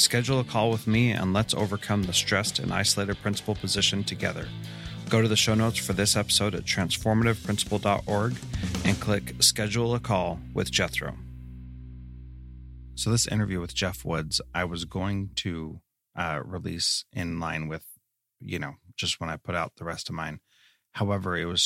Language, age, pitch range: English, 30-49, 85-105 Hz